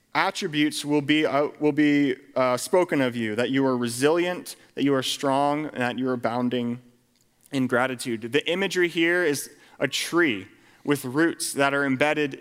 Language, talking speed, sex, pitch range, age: English, 175 wpm, male, 120-150 Hz, 30-49